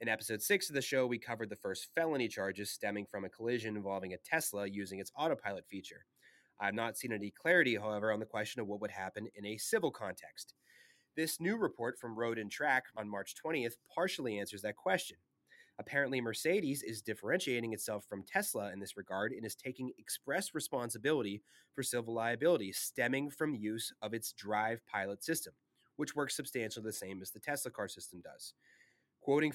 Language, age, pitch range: English, 30-49, 105-135 Hz